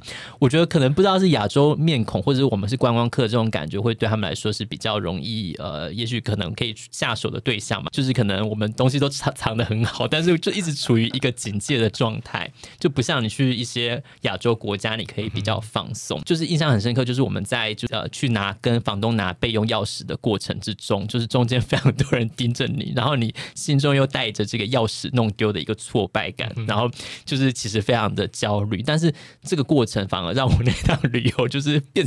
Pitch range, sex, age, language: 110-140 Hz, male, 20-39, Chinese